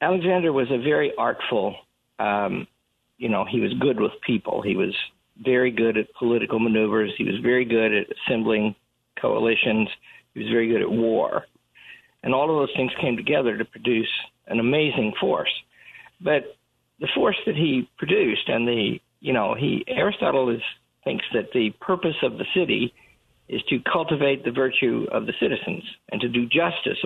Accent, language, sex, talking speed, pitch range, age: American, English, male, 170 wpm, 115-155 Hz, 50-69